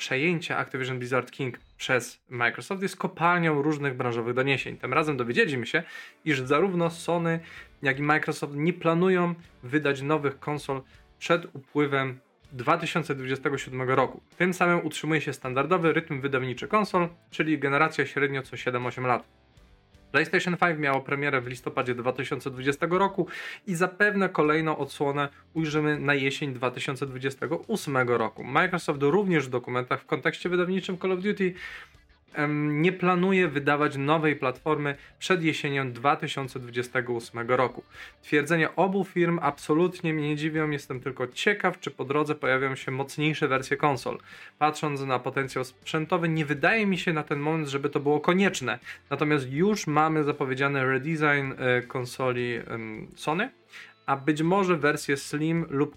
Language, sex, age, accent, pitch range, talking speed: Polish, male, 20-39, native, 130-165 Hz, 135 wpm